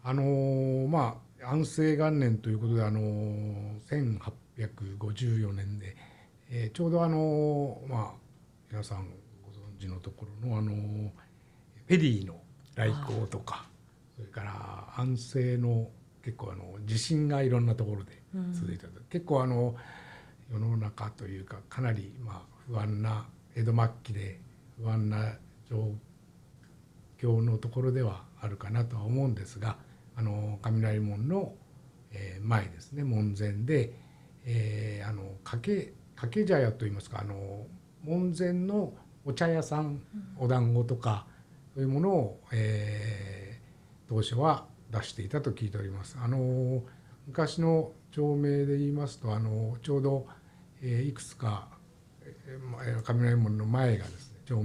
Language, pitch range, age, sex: Japanese, 105-135 Hz, 60-79, male